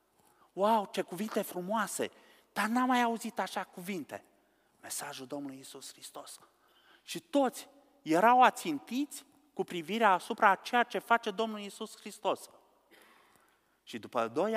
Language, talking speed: Romanian, 125 wpm